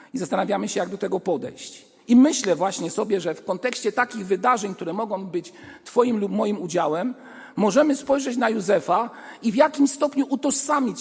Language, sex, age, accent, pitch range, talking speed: Polish, male, 50-69, native, 165-275 Hz, 175 wpm